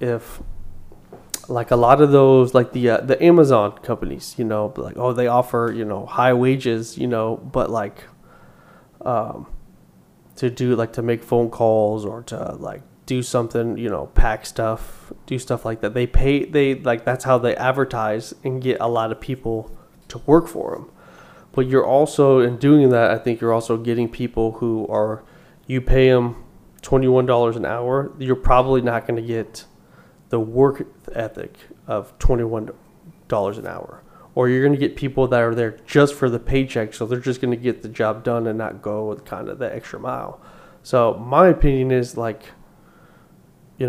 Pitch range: 115-130 Hz